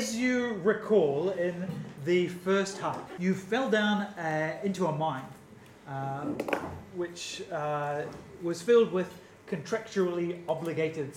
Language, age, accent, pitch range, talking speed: English, 30-49, Australian, 145-195 Hz, 120 wpm